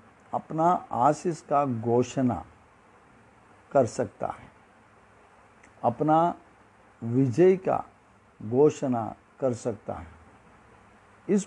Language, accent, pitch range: Hindi, native, 110-140 Hz